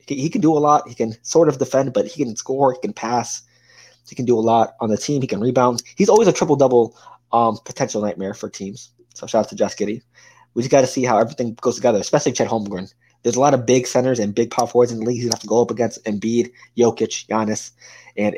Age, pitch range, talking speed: 20-39, 110-135 Hz, 260 wpm